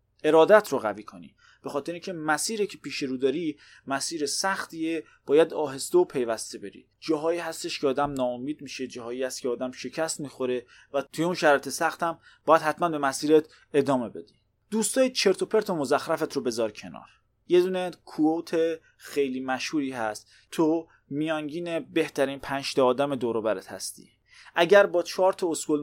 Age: 30-49